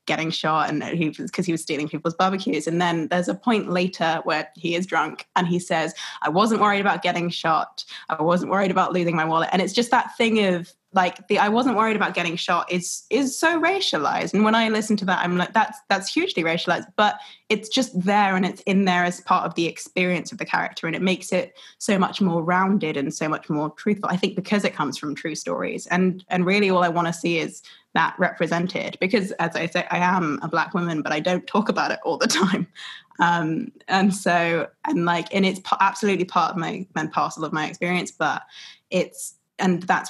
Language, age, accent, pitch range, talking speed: English, 20-39, British, 165-195 Hz, 225 wpm